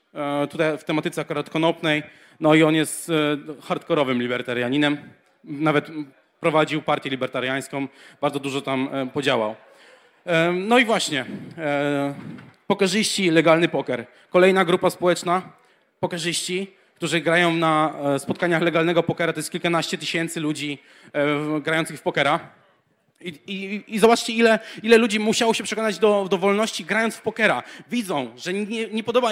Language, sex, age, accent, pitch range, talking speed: Polish, male, 30-49, native, 155-200 Hz, 130 wpm